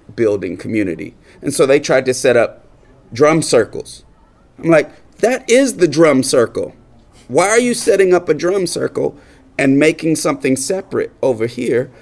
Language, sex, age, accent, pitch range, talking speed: French, male, 30-49, American, 120-170 Hz, 160 wpm